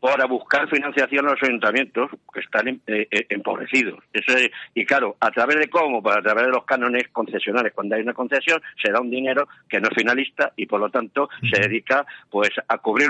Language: Spanish